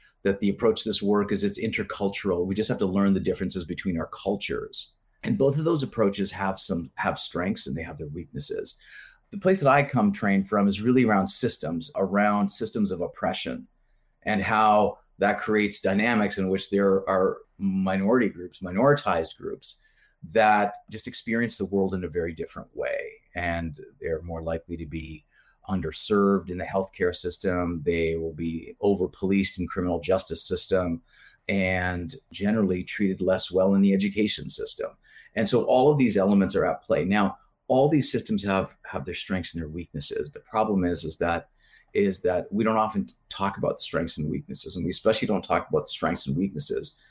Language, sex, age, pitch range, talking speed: English, male, 30-49, 90-105 Hz, 185 wpm